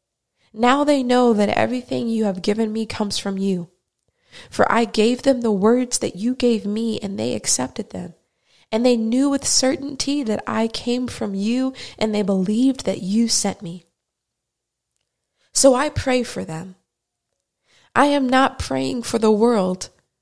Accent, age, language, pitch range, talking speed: American, 20-39, English, 195-240 Hz, 165 wpm